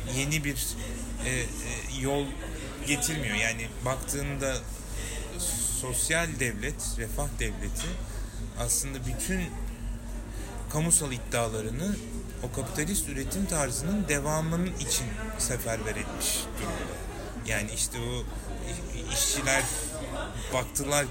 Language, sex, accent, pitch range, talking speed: Turkish, male, native, 110-135 Hz, 80 wpm